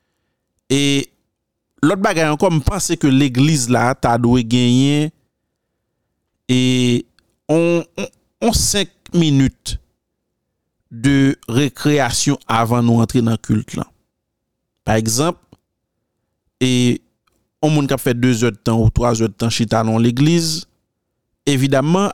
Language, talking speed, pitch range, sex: French, 115 wpm, 115-145 Hz, male